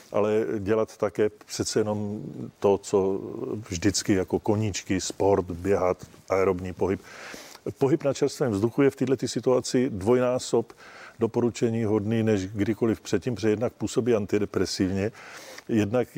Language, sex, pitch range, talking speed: Czech, male, 105-120 Hz, 120 wpm